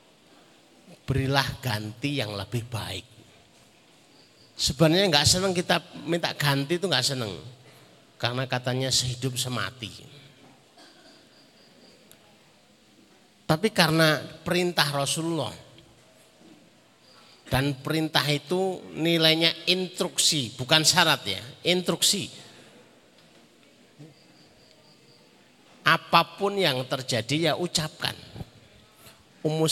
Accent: native